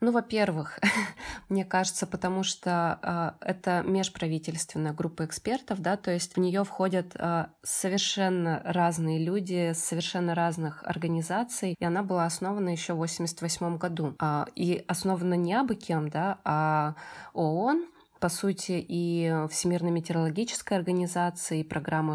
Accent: native